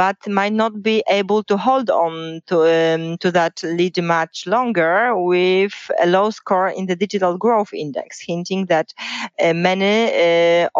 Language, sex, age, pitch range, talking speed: English, female, 30-49, 165-210 Hz, 155 wpm